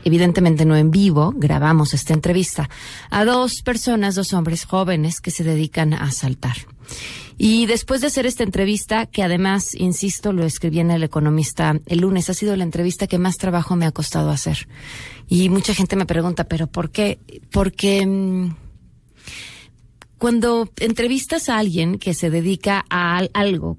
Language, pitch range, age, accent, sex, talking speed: Spanish, 155-195 Hz, 30-49, Mexican, female, 160 wpm